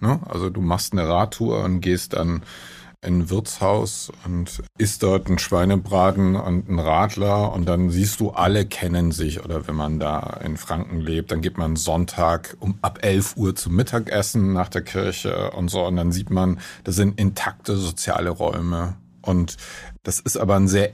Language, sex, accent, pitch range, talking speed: German, male, German, 90-105 Hz, 180 wpm